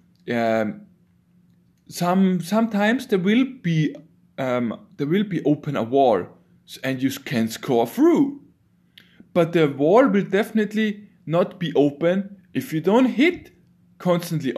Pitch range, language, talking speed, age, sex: 150-205 Hz, German, 130 wpm, 20-39, male